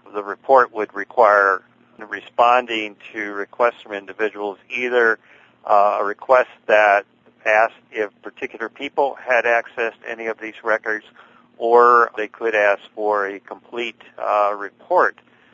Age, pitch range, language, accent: 40-59, 100-115 Hz, English, American